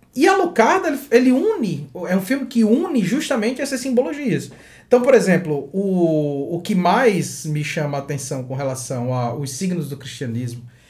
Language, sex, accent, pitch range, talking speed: Portuguese, male, Brazilian, 145-225 Hz, 165 wpm